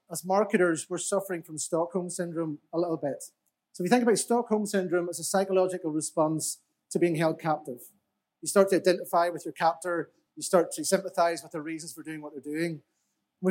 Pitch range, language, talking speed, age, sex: 160-190 Hz, English, 195 wpm, 30-49, male